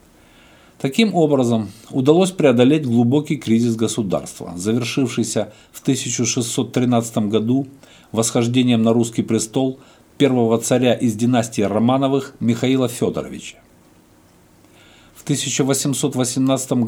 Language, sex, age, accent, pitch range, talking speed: Russian, male, 50-69, native, 115-145 Hz, 85 wpm